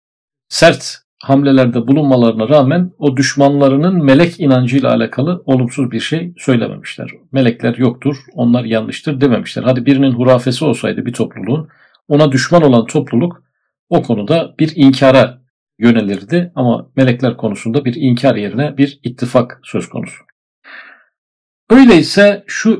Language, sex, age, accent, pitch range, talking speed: Turkish, male, 50-69, native, 120-150 Hz, 120 wpm